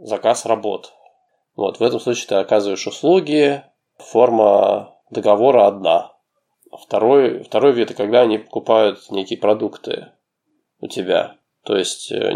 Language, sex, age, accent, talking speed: Russian, male, 20-39, native, 115 wpm